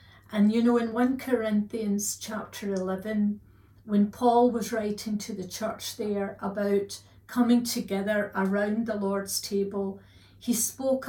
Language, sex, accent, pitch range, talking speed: English, female, British, 190-225 Hz, 135 wpm